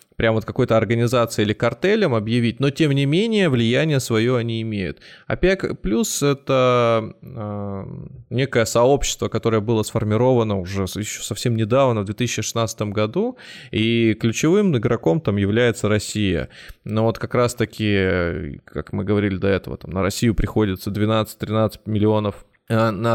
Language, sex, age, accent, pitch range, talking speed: Russian, male, 20-39, native, 105-120 Hz, 135 wpm